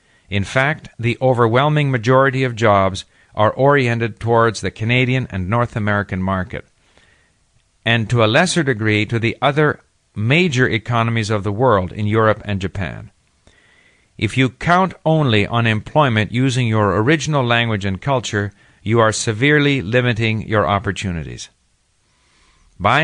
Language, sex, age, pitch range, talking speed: English, male, 50-69, 100-130 Hz, 135 wpm